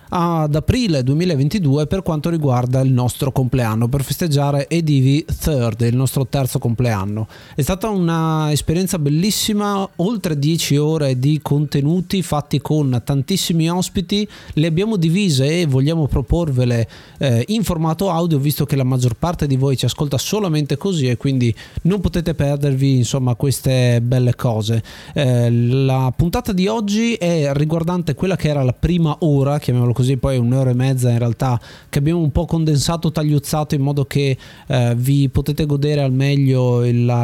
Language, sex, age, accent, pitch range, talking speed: Italian, male, 30-49, native, 130-170 Hz, 155 wpm